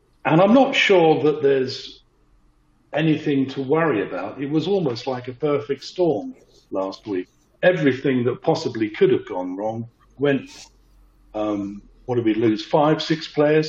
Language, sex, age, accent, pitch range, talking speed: English, male, 50-69, British, 120-145 Hz, 155 wpm